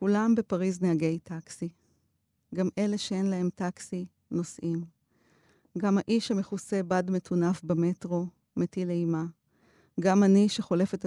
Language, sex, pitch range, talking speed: Hebrew, female, 165-195 Hz, 115 wpm